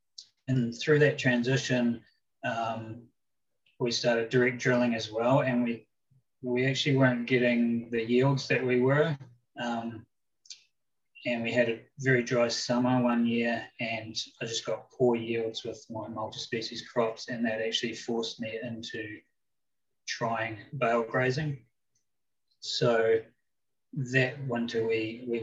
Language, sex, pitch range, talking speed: English, male, 115-125 Hz, 130 wpm